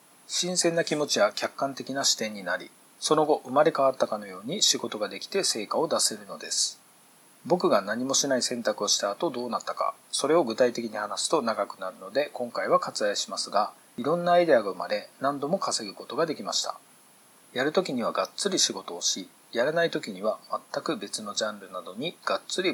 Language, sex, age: Japanese, male, 40-59